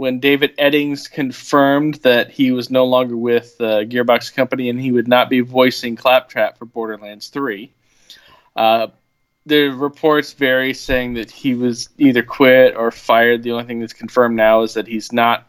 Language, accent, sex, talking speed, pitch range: English, American, male, 175 wpm, 115-135 Hz